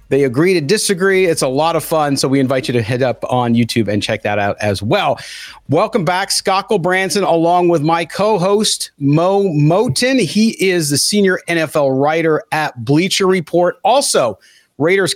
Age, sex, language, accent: 40-59, male, English, American